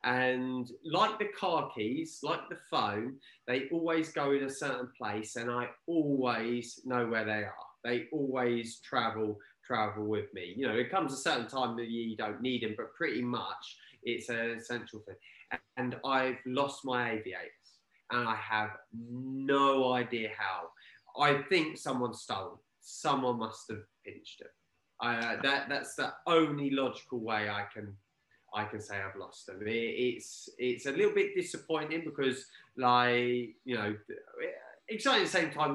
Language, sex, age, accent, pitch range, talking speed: English, male, 20-39, British, 110-140 Hz, 165 wpm